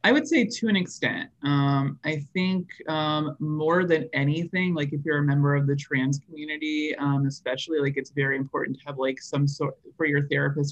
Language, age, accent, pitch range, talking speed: English, 20-39, American, 135-165 Hz, 200 wpm